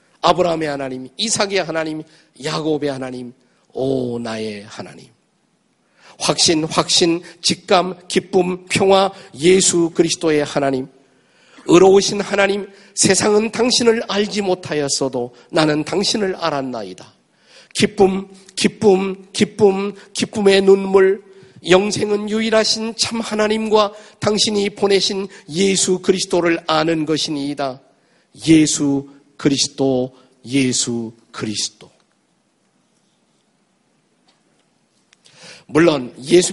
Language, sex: Korean, male